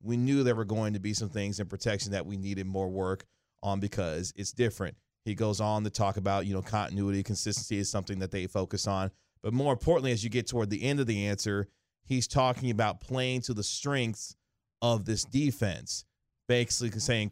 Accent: American